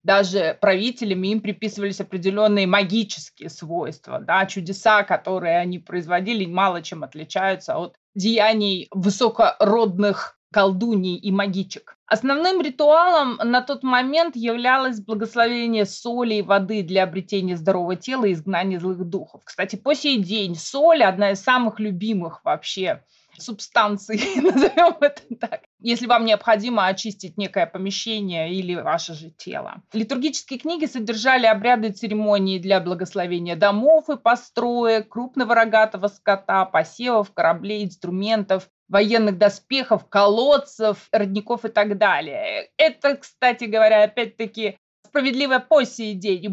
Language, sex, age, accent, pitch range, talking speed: Russian, female, 20-39, native, 195-240 Hz, 125 wpm